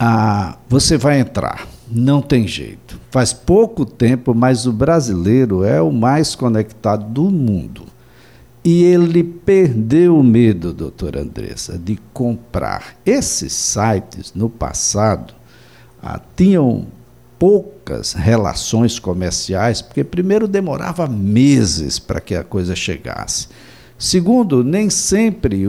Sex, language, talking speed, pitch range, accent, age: male, Portuguese, 115 wpm, 100-140 Hz, Brazilian, 60-79